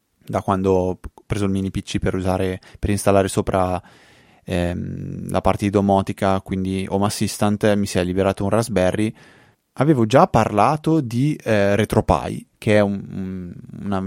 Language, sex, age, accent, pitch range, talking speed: Italian, male, 20-39, native, 95-120 Hz, 160 wpm